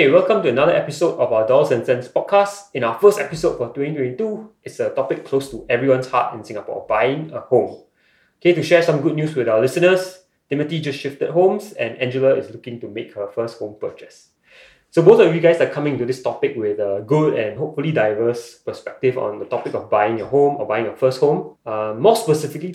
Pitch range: 120-175 Hz